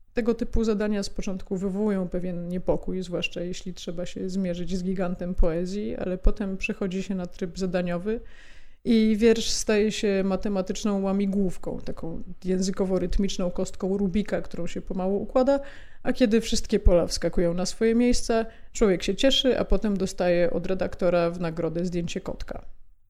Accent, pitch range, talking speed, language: native, 185-205 Hz, 150 wpm, Polish